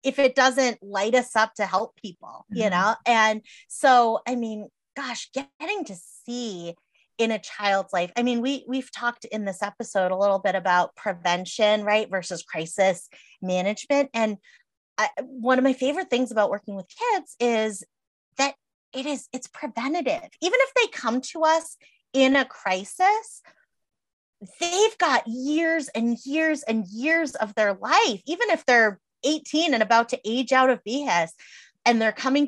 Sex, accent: female, American